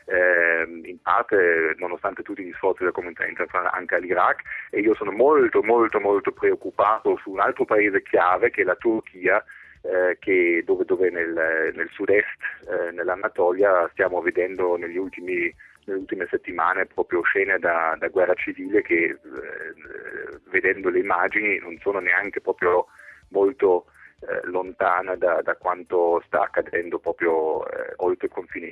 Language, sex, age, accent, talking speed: Italian, male, 30-49, native, 155 wpm